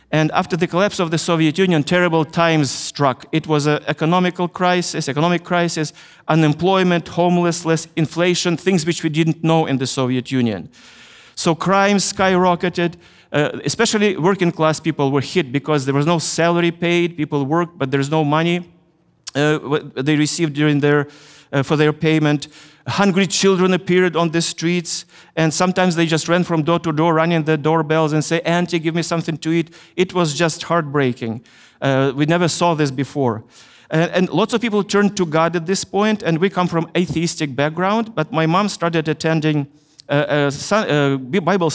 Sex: male